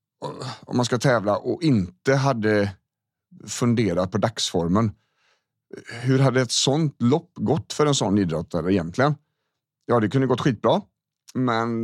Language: Swedish